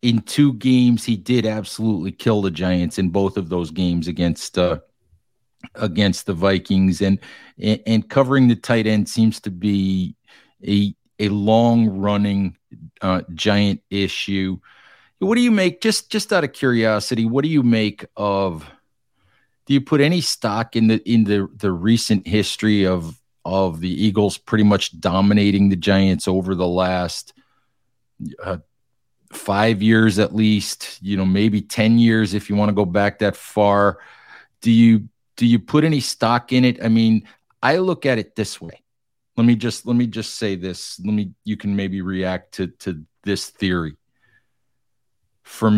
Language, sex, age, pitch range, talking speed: English, male, 40-59, 95-115 Hz, 165 wpm